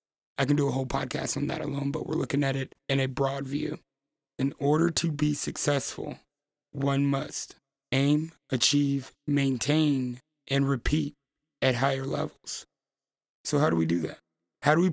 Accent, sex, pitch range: American, male, 135-145 Hz